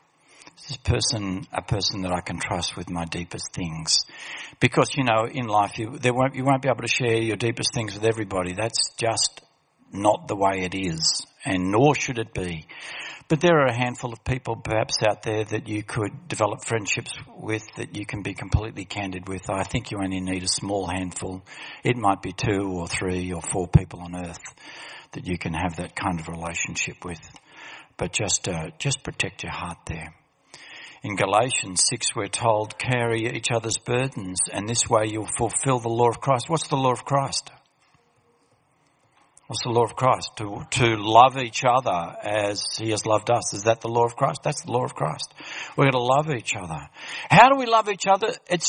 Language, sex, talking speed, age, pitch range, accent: English, male, 200 wpm, 60-79, 100-135 Hz, Australian